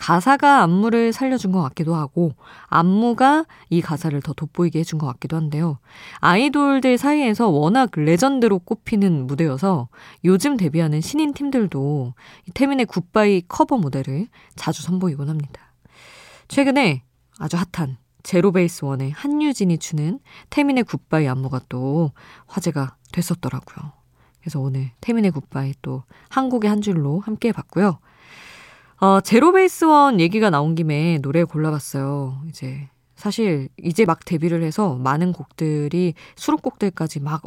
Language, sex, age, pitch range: Korean, female, 20-39, 145-200 Hz